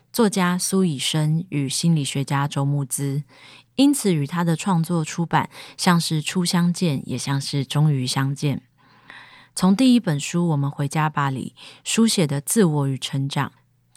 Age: 20-39